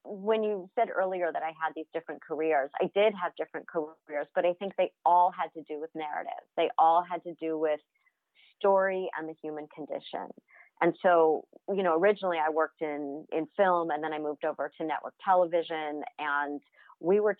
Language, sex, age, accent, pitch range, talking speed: English, female, 40-59, American, 160-205 Hz, 195 wpm